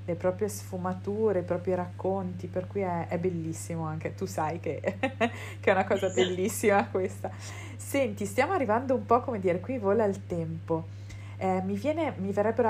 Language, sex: Italian, female